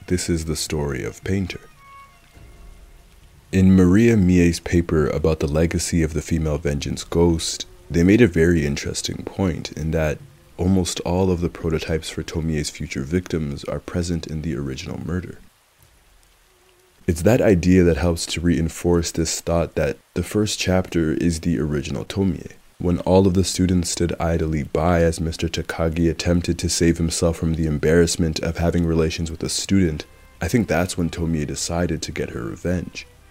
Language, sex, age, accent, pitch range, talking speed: English, male, 20-39, American, 80-90 Hz, 165 wpm